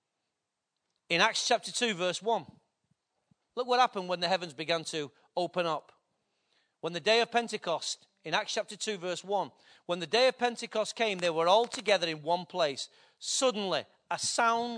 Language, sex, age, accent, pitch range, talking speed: English, male, 40-59, British, 175-230 Hz, 175 wpm